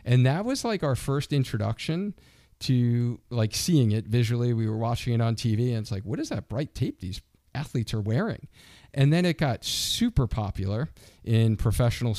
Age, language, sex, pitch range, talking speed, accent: 40-59, English, male, 105-125 Hz, 185 wpm, American